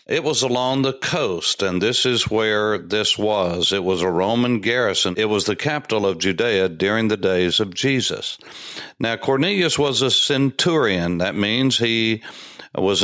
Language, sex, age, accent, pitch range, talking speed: English, male, 60-79, American, 105-135 Hz, 165 wpm